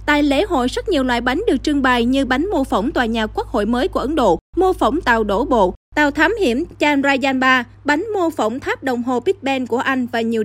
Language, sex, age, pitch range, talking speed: Vietnamese, female, 20-39, 240-330 Hz, 255 wpm